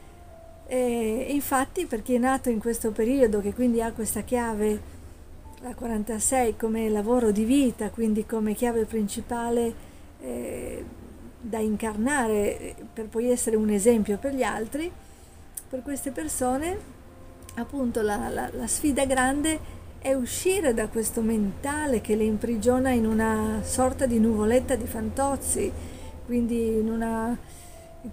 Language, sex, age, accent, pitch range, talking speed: Italian, female, 40-59, native, 220-260 Hz, 135 wpm